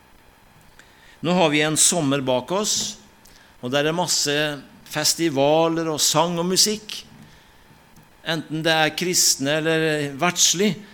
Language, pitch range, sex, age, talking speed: English, 125-170 Hz, male, 60-79, 125 wpm